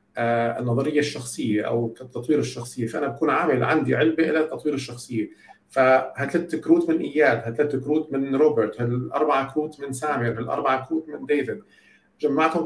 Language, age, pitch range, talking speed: Arabic, 50-69, 115-150 Hz, 140 wpm